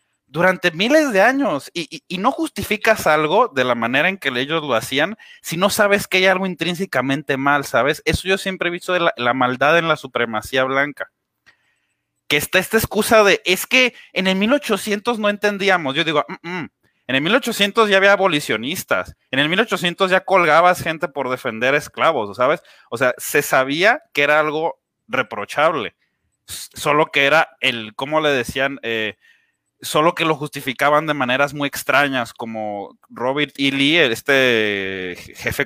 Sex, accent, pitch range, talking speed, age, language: male, Mexican, 130-195 Hz, 170 wpm, 30-49, Spanish